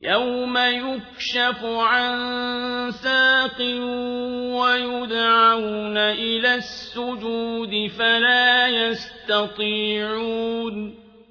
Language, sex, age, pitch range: Arabic, male, 50-69, 225-245 Hz